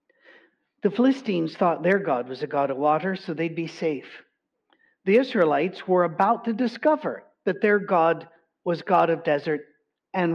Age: 50-69